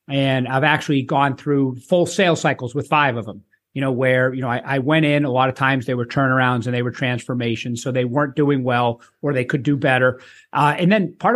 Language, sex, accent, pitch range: English, male, American, 135-170 Hz